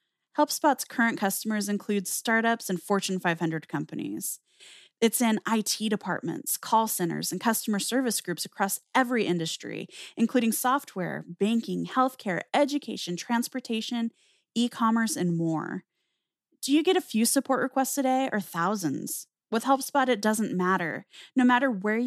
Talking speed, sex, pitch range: 135 wpm, female, 180-240 Hz